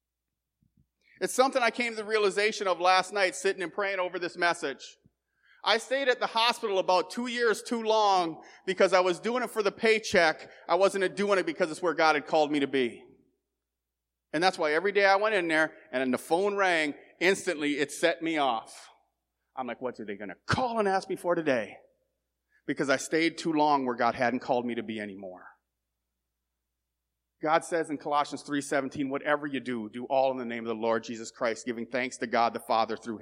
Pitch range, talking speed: 120-180 Hz, 210 wpm